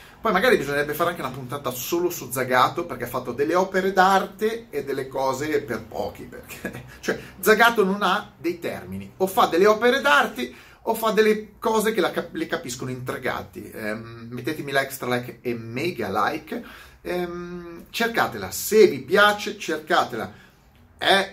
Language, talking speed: Italian, 160 wpm